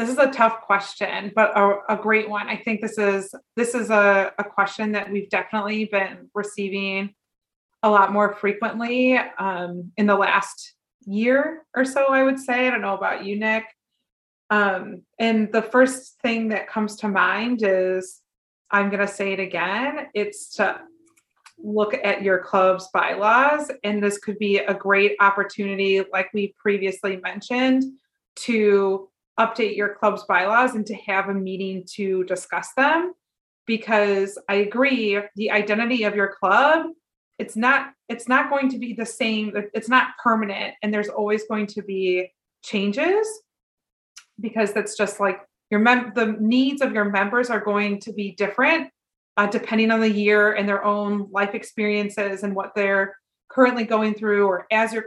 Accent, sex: American, female